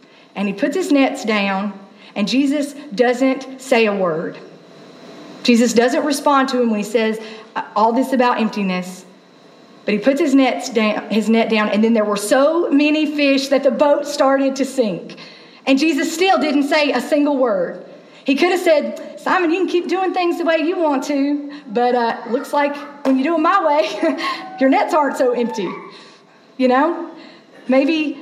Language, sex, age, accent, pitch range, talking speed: English, female, 40-59, American, 230-300 Hz, 185 wpm